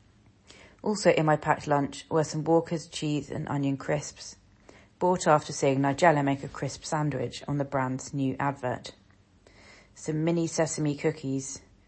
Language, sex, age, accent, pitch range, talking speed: English, female, 30-49, British, 100-150 Hz, 145 wpm